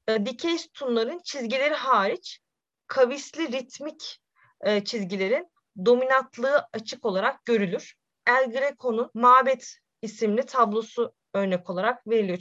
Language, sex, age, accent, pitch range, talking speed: Turkish, female, 30-49, native, 225-285 Hz, 90 wpm